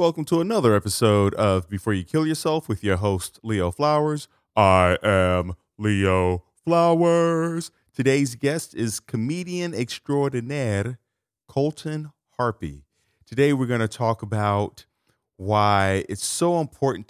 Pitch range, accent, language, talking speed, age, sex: 95-125 Hz, American, English, 125 wpm, 30-49, male